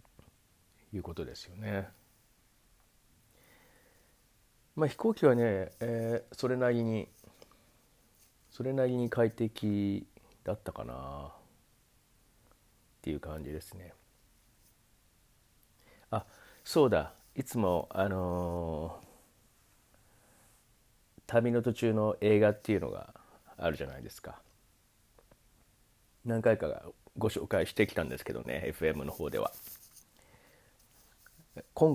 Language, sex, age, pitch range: Japanese, male, 40-59, 95-120 Hz